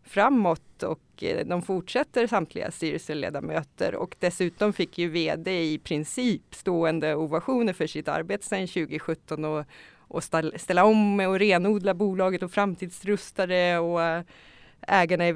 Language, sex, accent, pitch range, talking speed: Swedish, female, native, 170-210 Hz, 125 wpm